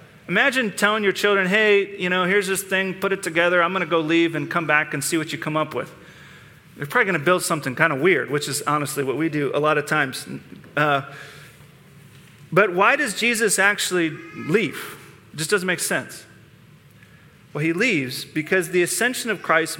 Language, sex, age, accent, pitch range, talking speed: English, male, 40-59, American, 160-205 Hz, 205 wpm